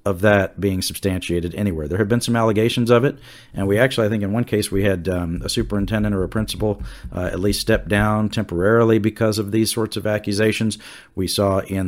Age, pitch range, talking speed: 50-69, 95-115 Hz, 215 wpm